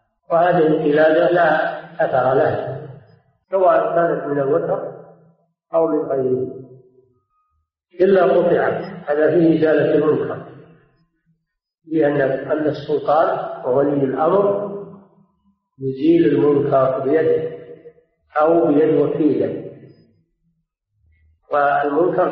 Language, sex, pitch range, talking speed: Arabic, male, 140-170 Hz, 80 wpm